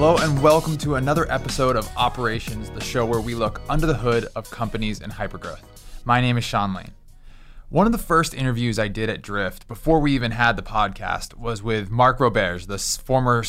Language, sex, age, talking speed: English, male, 20-39, 205 wpm